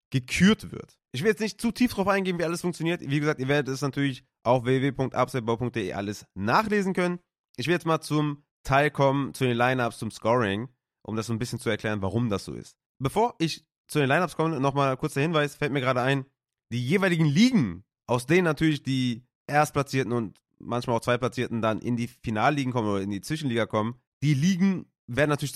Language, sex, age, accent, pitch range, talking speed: German, male, 30-49, German, 110-150 Hz, 205 wpm